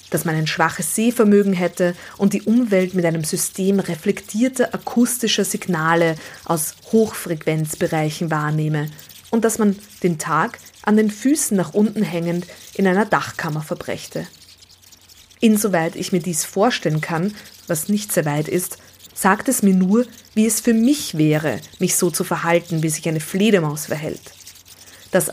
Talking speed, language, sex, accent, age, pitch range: 150 wpm, German, female, German, 20-39, 160-210 Hz